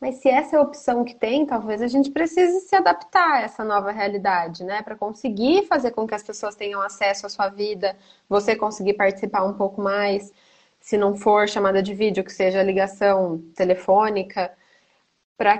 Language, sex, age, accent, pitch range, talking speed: Portuguese, female, 20-39, Brazilian, 200-260 Hz, 185 wpm